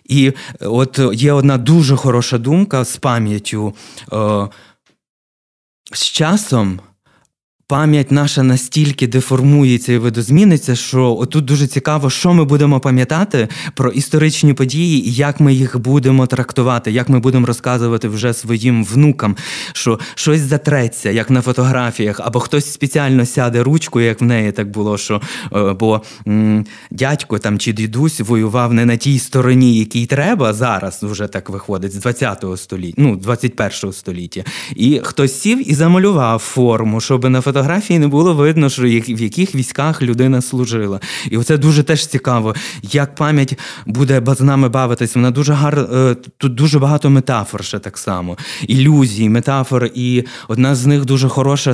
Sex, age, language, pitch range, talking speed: male, 20-39, Ukrainian, 115-145 Hz, 145 wpm